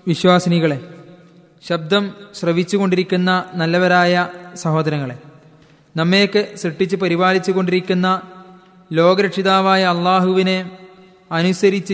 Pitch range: 180-210 Hz